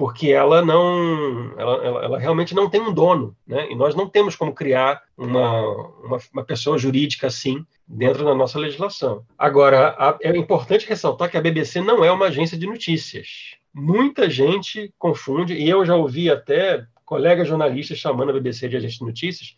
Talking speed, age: 170 wpm, 40-59